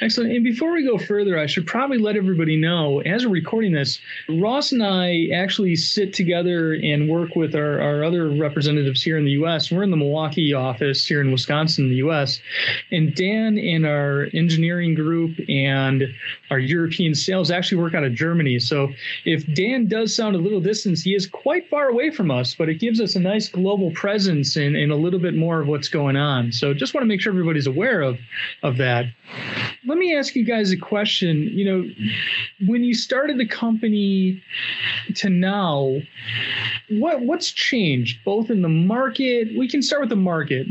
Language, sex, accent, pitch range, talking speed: English, male, American, 150-210 Hz, 190 wpm